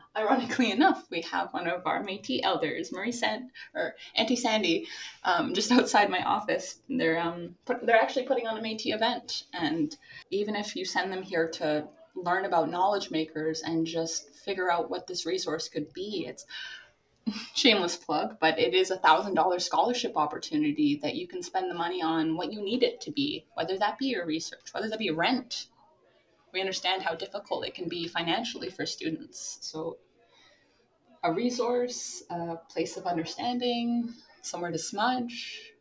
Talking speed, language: 175 wpm, English